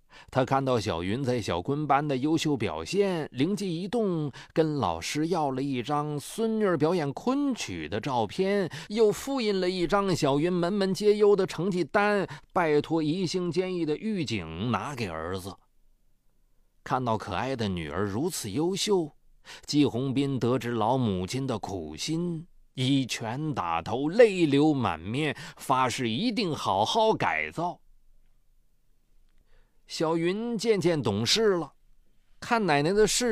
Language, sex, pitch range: Chinese, male, 120-185 Hz